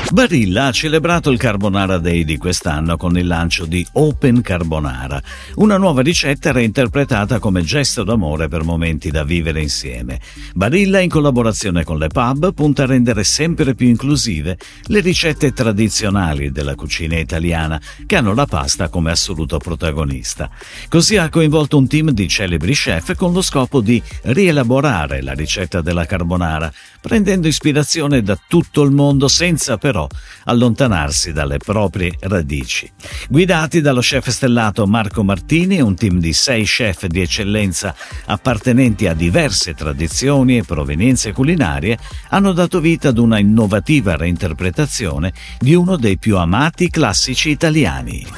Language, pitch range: Italian, 85-140 Hz